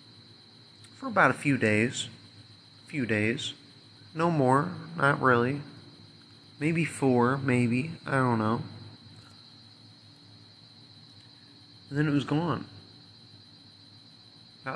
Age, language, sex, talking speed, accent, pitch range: 30-49, English, male, 100 wpm, American, 110-135 Hz